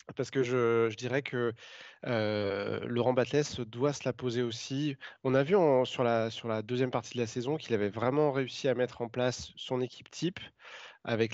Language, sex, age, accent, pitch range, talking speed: French, male, 20-39, French, 115-135 Hz, 205 wpm